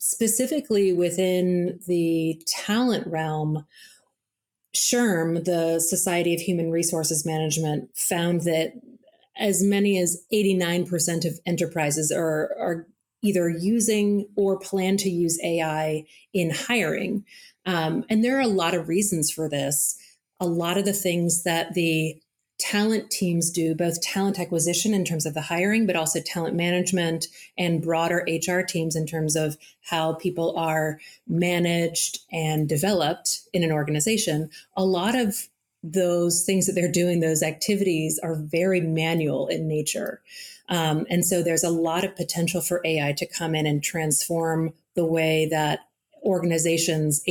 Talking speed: 145 wpm